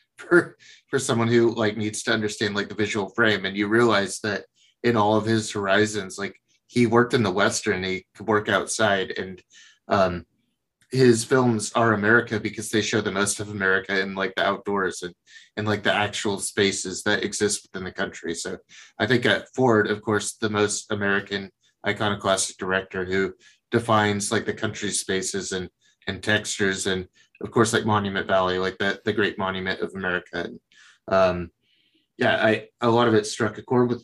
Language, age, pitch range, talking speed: English, 30-49, 95-110 Hz, 185 wpm